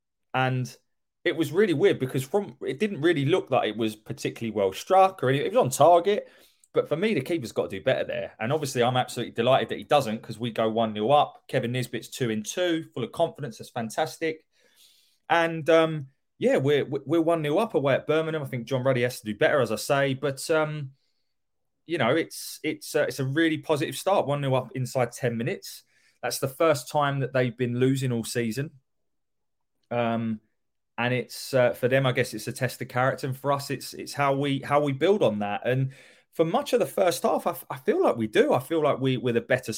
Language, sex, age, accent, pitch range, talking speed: English, male, 20-39, British, 120-150 Hz, 225 wpm